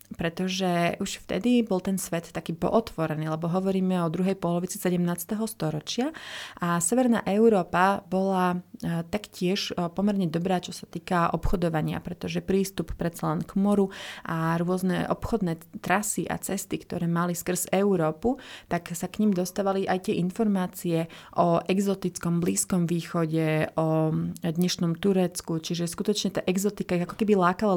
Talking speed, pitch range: 140 wpm, 170-195 Hz